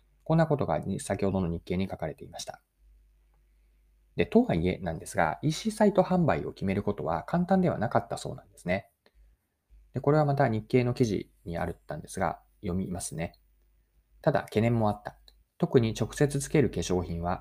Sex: male